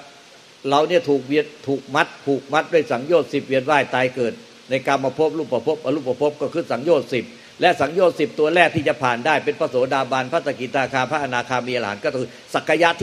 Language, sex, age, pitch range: Thai, male, 60-79, 130-155 Hz